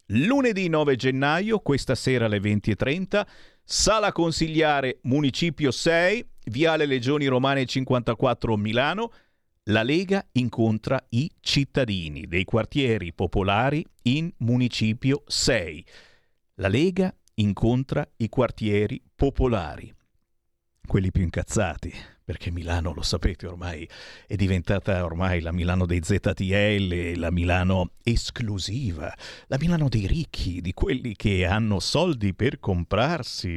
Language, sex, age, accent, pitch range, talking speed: Italian, male, 50-69, native, 100-150 Hz, 110 wpm